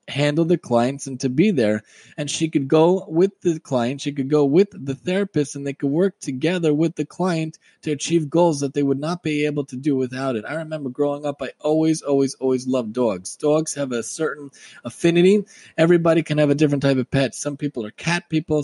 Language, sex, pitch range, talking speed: English, male, 135-160 Hz, 220 wpm